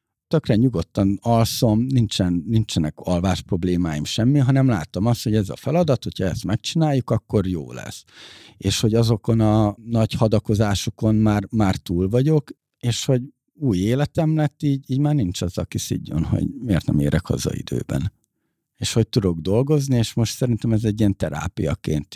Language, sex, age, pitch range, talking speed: Hungarian, male, 50-69, 90-115 Hz, 160 wpm